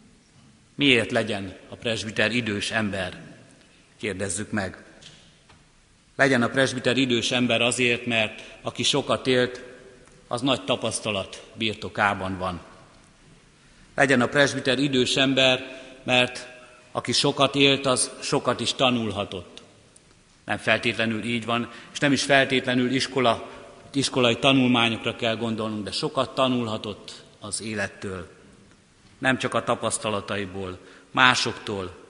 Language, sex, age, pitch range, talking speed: Hungarian, male, 60-79, 115-130 Hz, 110 wpm